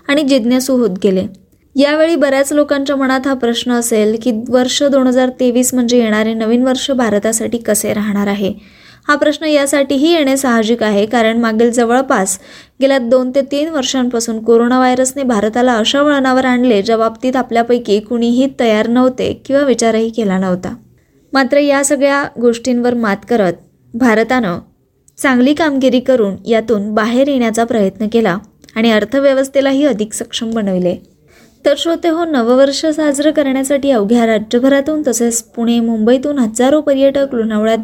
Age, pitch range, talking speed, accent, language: 20-39, 225-275 Hz, 140 wpm, native, Marathi